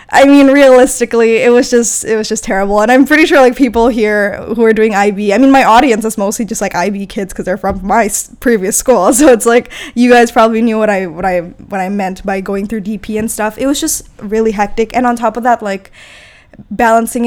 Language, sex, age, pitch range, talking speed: English, female, 10-29, 205-240 Hz, 240 wpm